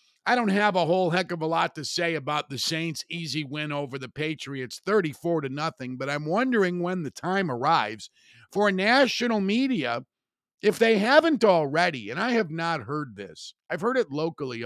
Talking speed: 190 wpm